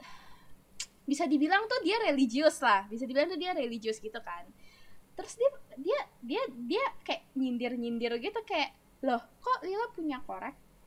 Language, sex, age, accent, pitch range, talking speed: Indonesian, female, 10-29, native, 245-360 Hz, 150 wpm